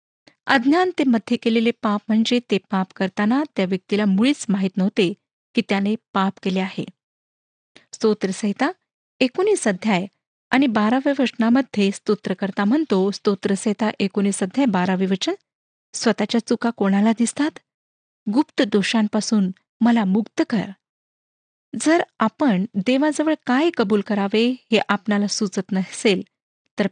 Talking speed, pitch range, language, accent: 115 wpm, 200-260 Hz, Marathi, native